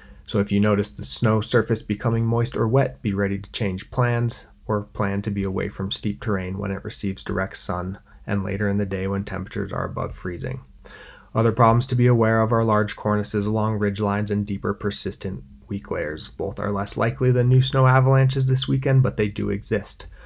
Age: 30-49